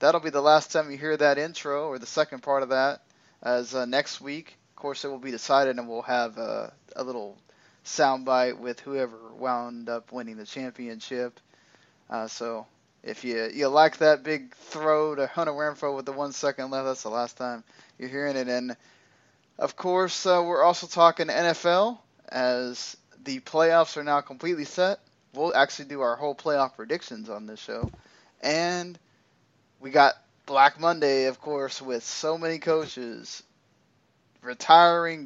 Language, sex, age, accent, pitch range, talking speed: English, male, 10-29, American, 125-155 Hz, 170 wpm